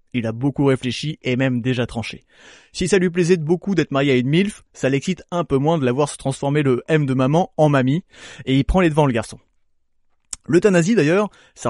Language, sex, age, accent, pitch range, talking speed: French, male, 20-39, French, 130-185 Hz, 225 wpm